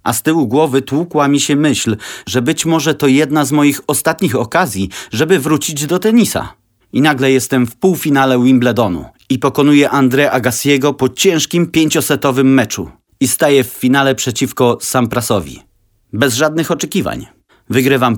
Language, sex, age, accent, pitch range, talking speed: Polish, male, 30-49, native, 120-150 Hz, 150 wpm